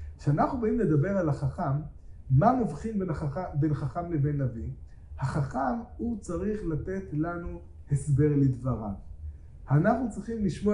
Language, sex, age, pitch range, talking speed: Hebrew, male, 30-49, 145-215 Hz, 130 wpm